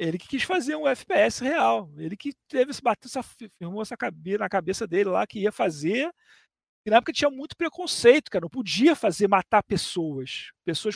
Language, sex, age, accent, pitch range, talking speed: Portuguese, male, 40-59, Brazilian, 190-275 Hz, 195 wpm